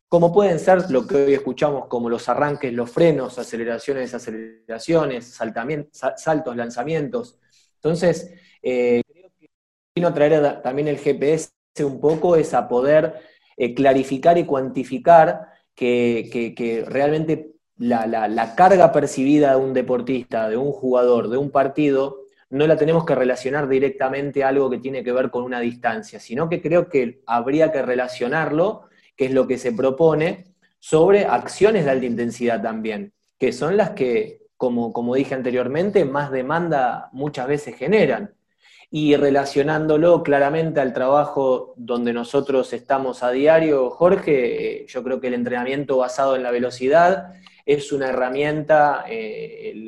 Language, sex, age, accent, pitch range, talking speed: Spanish, male, 20-39, Argentinian, 125-160 Hz, 155 wpm